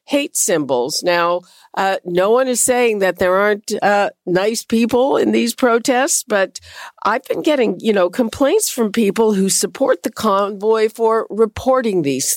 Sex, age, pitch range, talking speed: female, 50-69, 180-225 Hz, 160 wpm